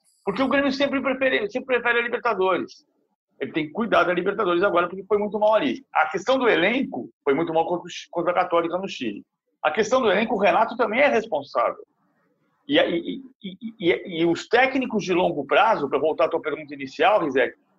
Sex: male